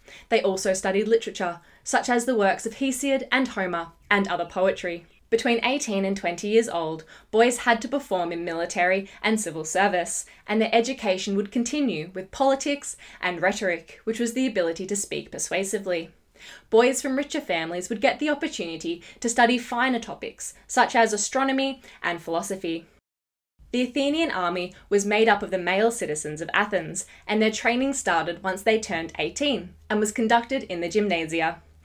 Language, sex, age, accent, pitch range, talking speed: English, female, 10-29, Australian, 175-235 Hz, 170 wpm